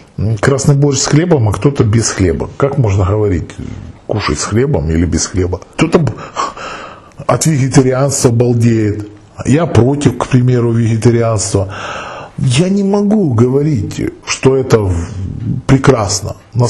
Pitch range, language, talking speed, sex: 110-145 Hz, Russian, 120 wpm, male